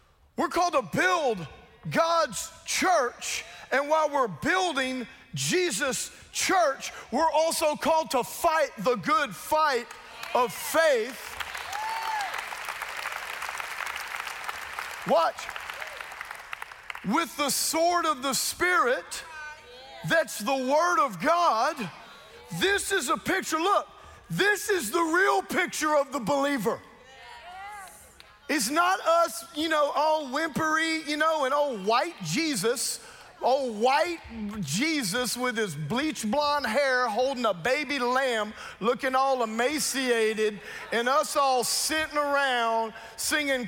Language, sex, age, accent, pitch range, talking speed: English, male, 40-59, American, 255-335 Hz, 110 wpm